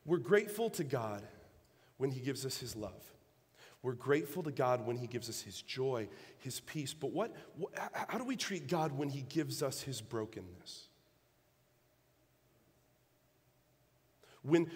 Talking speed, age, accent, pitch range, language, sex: 150 wpm, 30-49, American, 125-175 Hz, English, male